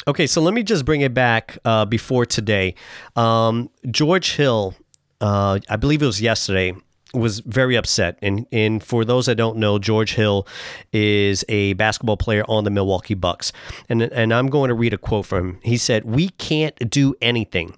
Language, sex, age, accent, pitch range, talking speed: English, male, 40-59, American, 105-125 Hz, 190 wpm